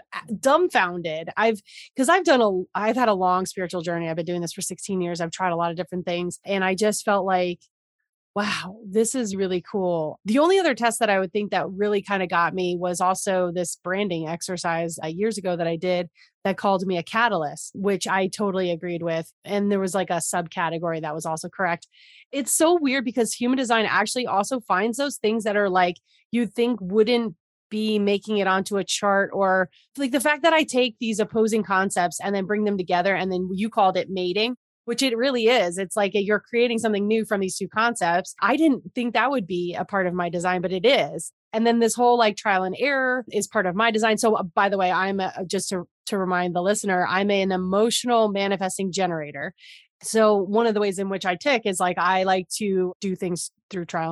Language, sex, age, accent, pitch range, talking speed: English, female, 30-49, American, 180-220 Hz, 220 wpm